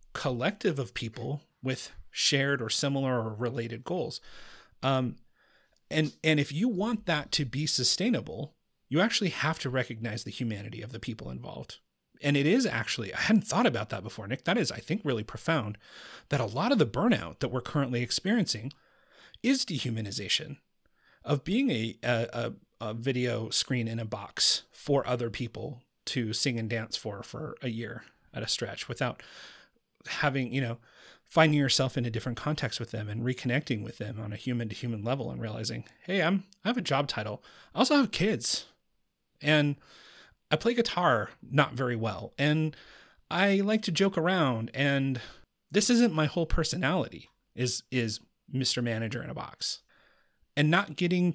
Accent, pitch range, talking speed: American, 115-155 Hz, 175 wpm